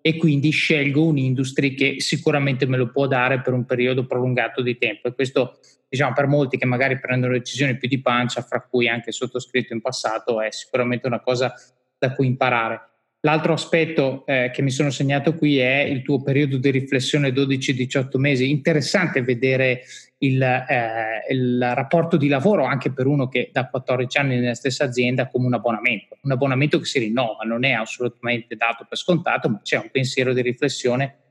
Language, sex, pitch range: Italian, male, 125-150 Hz